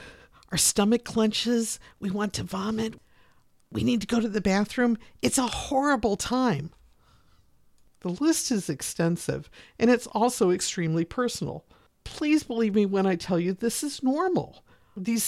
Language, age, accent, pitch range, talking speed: English, 50-69, American, 165-230 Hz, 150 wpm